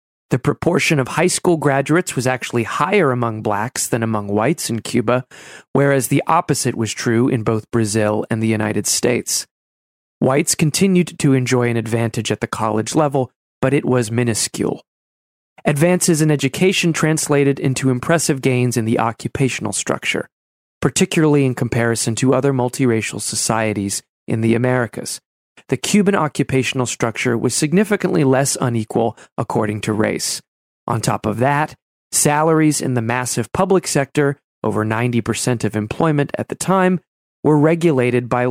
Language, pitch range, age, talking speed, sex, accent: English, 115-150 Hz, 30-49, 145 wpm, male, American